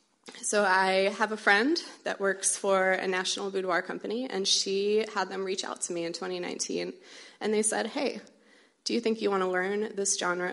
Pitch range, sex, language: 185-220 Hz, female, English